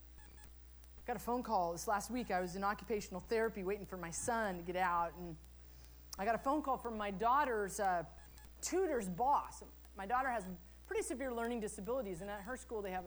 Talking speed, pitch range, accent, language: 200 wpm, 160-225 Hz, American, English